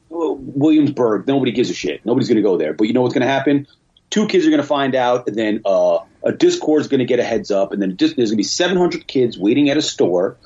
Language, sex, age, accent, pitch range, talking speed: English, male, 30-49, American, 115-160 Hz, 270 wpm